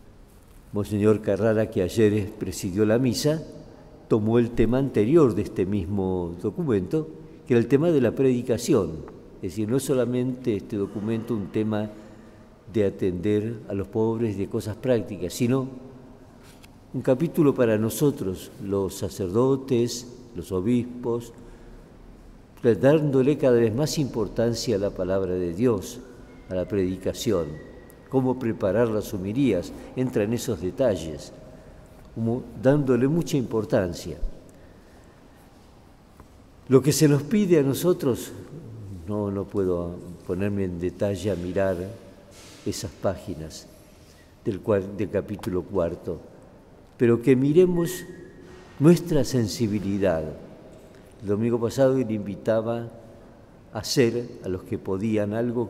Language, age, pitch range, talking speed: Spanish, 50-69, 100-125 Hz, 120 wpm